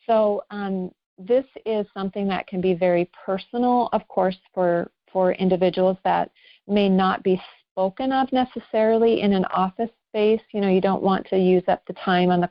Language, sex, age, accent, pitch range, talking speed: English, female, 40-59, American, 175-195 Hz, 180 wpm